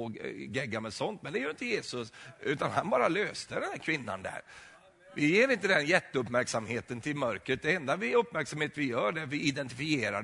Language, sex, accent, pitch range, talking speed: Swedish, male, native, 110-140 Hz, 200 wpm